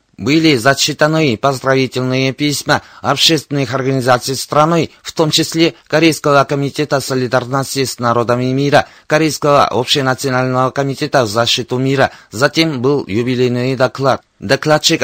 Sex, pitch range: male, 130-150 Hz